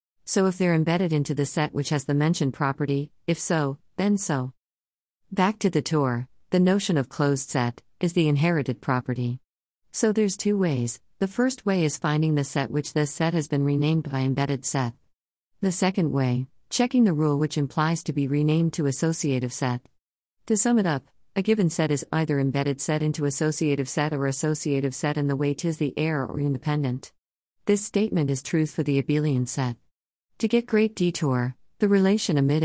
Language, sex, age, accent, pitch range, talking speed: English, female, 50-69, American, 135-165 Hz, 190 wpm